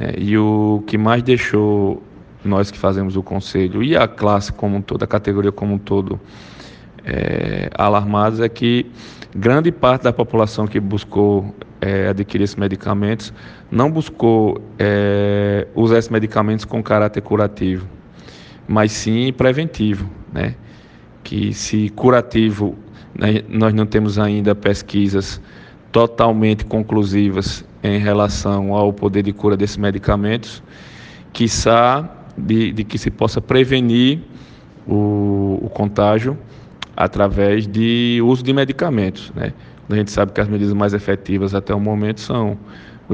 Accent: Brazilian